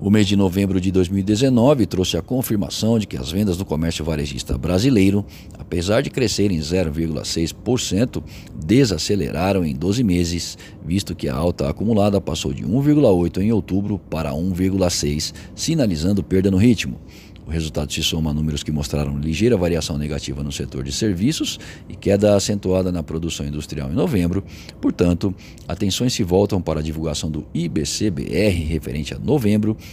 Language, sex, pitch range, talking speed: Portuguese, male, 80-105 Hz, 150 wpm